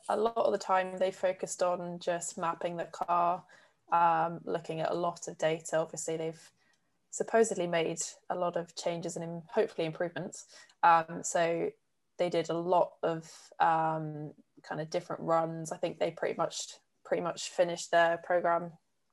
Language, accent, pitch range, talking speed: English, British, 165-190 Hz, 165 wpm